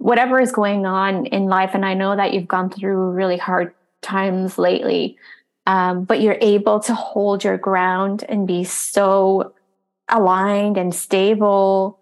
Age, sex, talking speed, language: 20-39, female, 155 wpm, English